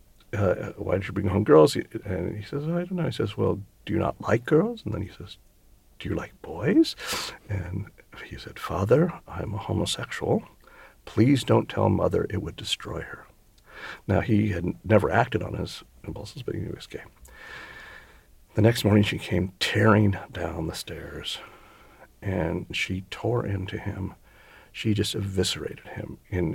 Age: 50-69